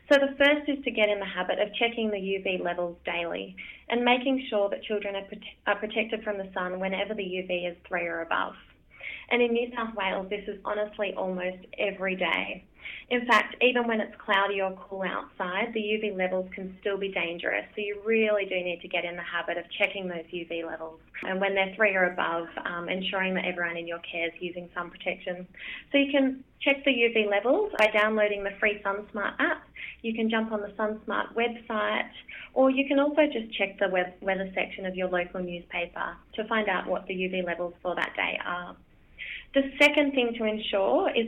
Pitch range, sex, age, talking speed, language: 185-225 Hz, female, 20-39, 205 wpm, English